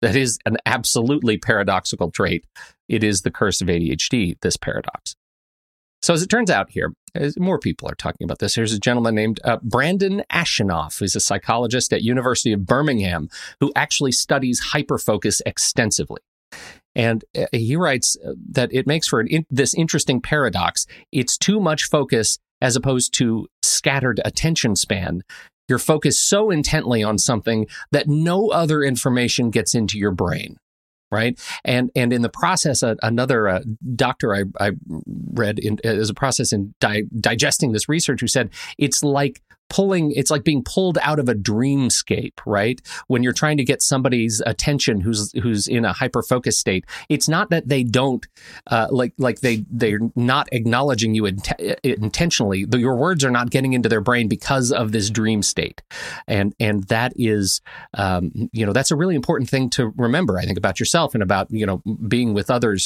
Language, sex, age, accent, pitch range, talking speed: English, male, 40-59, American, 110-140 Hz, 175 wpm